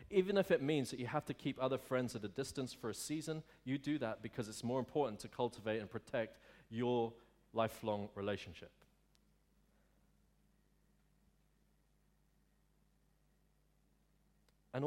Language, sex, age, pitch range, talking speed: English, male, 40-59, 105-130 Hz, 130 wpm